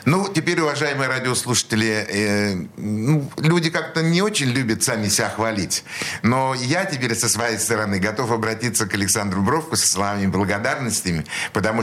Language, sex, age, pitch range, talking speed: Russian, male, 60-79, 95-120 Hz, 145 wpm